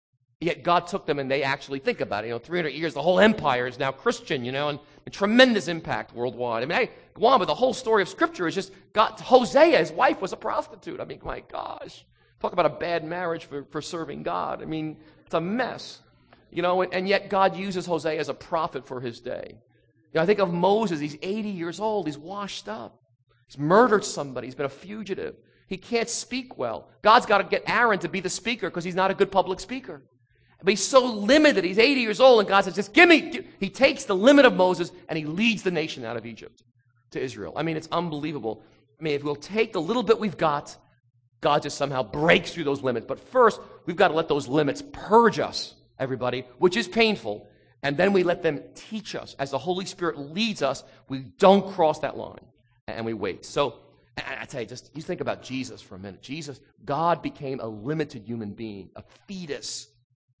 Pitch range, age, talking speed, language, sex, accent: 130-195 Hz, 40-59, 225 wpm, English, male, American